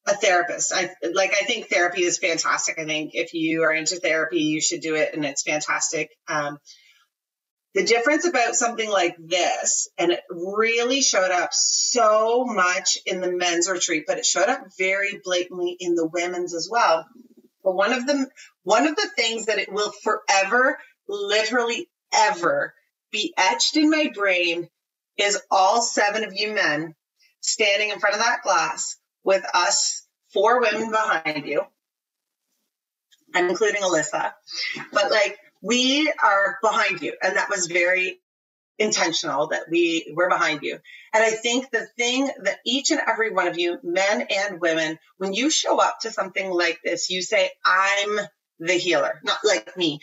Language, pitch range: English, 175-240 Hz